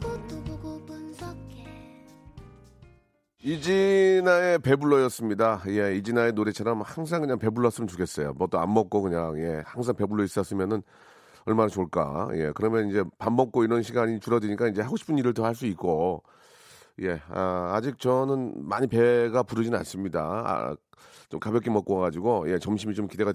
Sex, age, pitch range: male, 40-59, 105-140 Hz